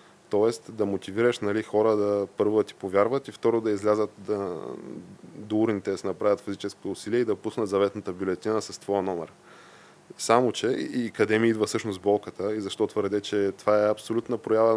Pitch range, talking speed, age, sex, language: 100-115 Hz, 190 wpm, 20-39, male, Bulgarian